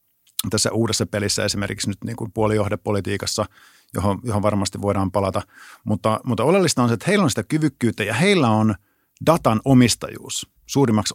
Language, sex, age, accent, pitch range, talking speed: Finnish, male, 50-69, native, 105-135 Hz, 155 wpm